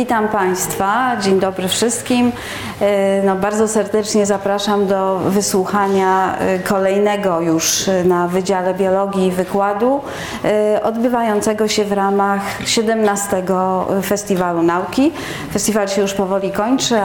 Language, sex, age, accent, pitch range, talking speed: Polish, female, 30-49, native, 195-225 Hz, 100 wpm